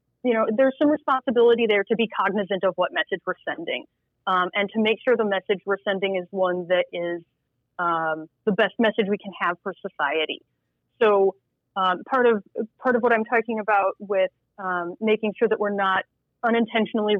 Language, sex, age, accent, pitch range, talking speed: English, female, 30-49, American, 185-225 Hz, 190 wpm